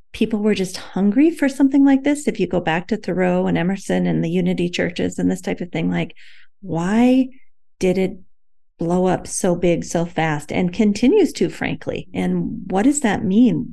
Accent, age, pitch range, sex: American, 40-59, 180-225 Hz, female